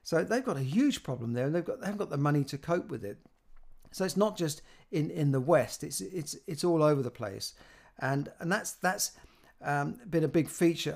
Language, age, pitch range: English, 50-69, 130-165 Hz